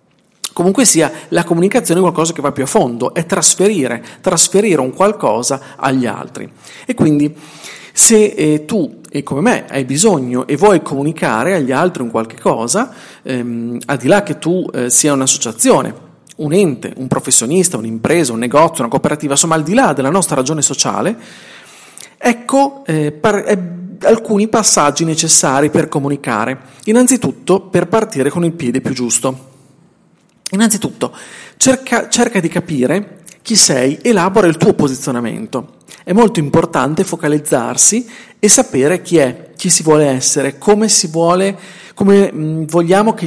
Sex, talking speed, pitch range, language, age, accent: male, 145 wpm, 140-200 Hz, Italian, 40-59, native